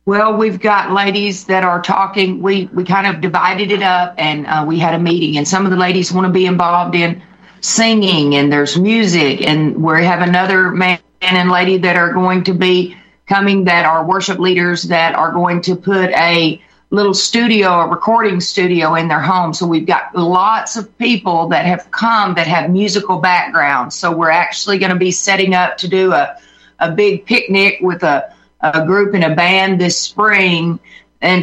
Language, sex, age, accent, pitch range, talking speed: English, female, 50-69, American, 170-195 Hz, 195 wpm